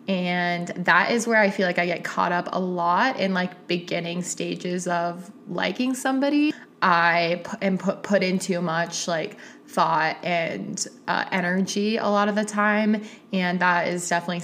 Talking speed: 165 wpm